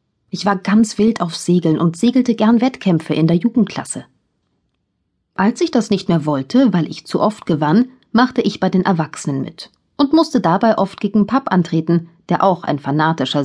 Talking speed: 185 wpm